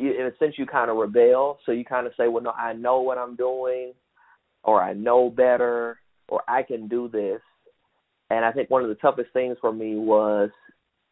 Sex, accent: male, American